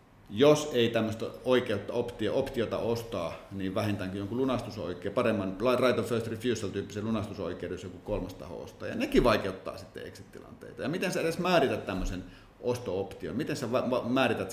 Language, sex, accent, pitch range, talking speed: Finnish, male, native, 95-125 Hz, 140 wpm